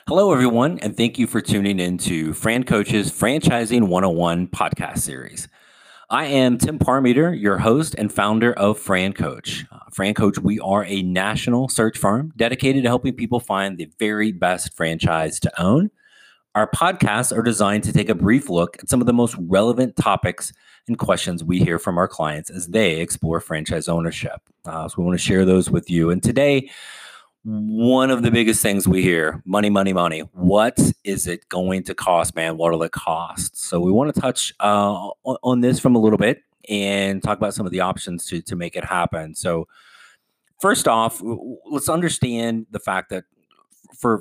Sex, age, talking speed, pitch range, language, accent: male, 30-49, 190 wpm, 90-120 Hz, English, American